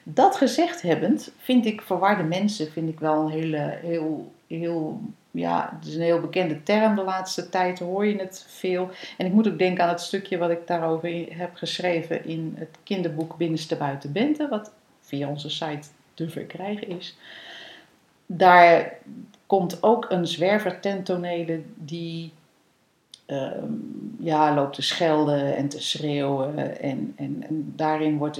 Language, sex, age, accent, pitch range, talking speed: Dutch, female, 40-59, Dutch, 160-195 Hz, 155 wpm